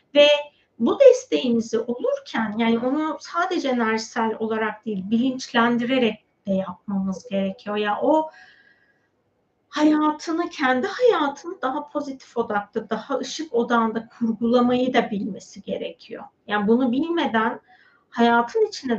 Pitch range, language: 220-265 Hz, Turkish